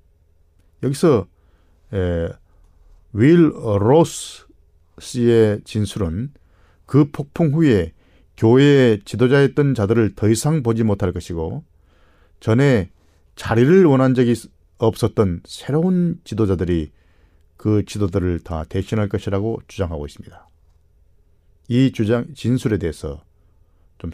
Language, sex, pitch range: Korean, male, 80-120 Hz